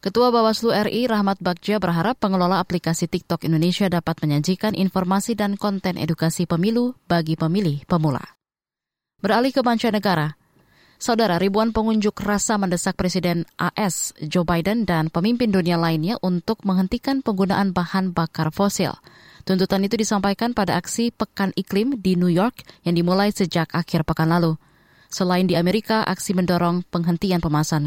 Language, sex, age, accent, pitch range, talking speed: Indonesian, female, 20-39, native, 170-210 Hz, 140 wpm